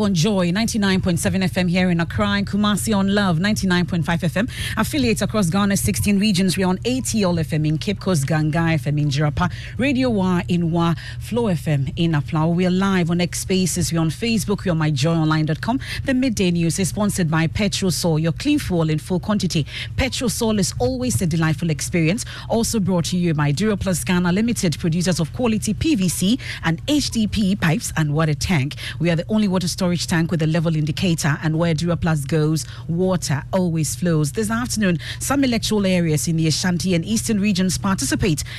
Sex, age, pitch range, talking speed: female, 40-59, 155-195 Hz, 185 wpm